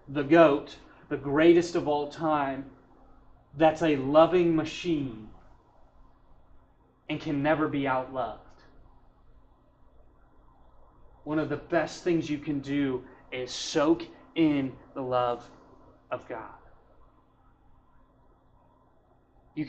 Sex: male